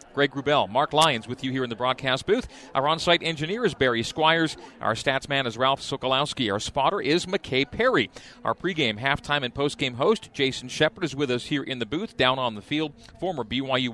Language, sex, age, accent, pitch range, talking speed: English, male, 40-59, American, 125-155 Hz, 210 wpm